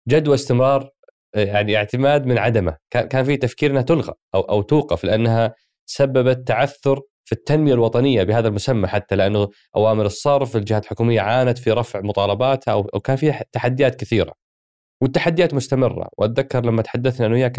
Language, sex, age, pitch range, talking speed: Arabic, male, 20-39, 110-140 Hz, 150 wpm